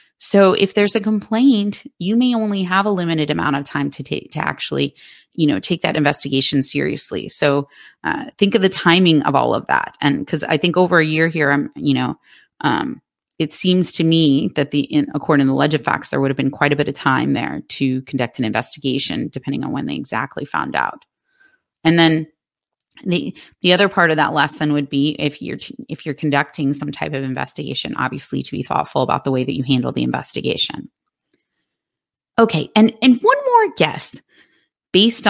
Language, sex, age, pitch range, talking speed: English, female, 30-49, 145-200 Hz, 200 wpm